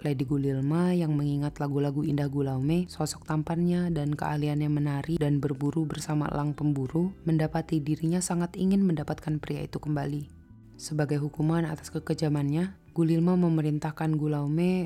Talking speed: 130 wpm